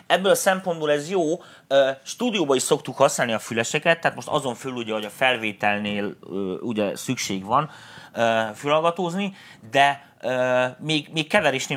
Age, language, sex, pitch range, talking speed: 30-49, Hungarian, male, 115-150 Hz, 140 wpm